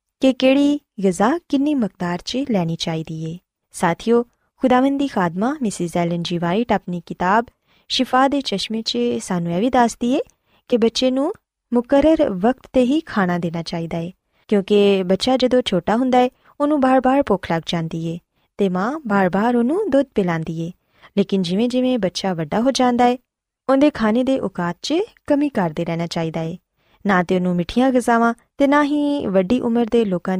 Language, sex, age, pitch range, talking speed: Urdu, female, 20-39, 180-255 Hz, 165 wpm